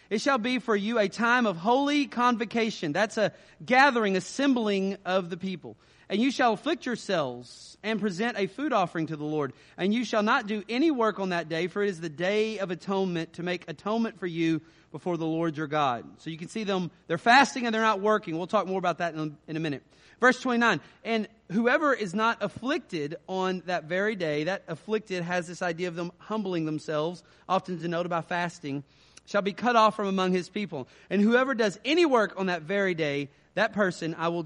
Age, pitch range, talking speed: 30-49, 165-220 Hz, 210 wpm